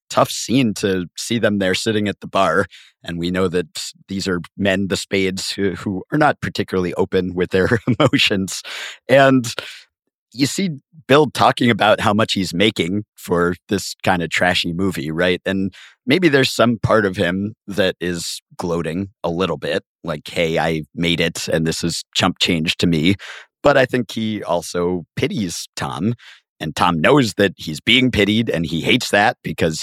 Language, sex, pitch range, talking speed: English, male, 90-115 Hz, 180 wpm